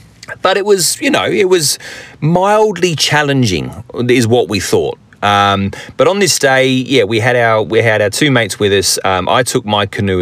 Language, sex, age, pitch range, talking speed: English, male, 30-49, 95-140 Hz, 200 wpm